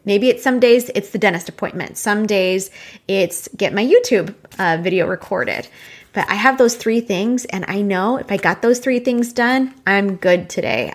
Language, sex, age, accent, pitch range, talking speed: English, female, 20-39, American, 190-240 Hz, 195 wpm